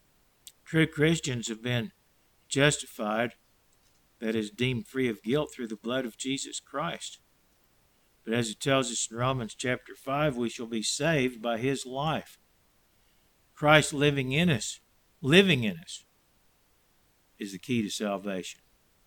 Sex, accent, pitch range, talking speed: male, American, 115-145 Hz, 140 wpm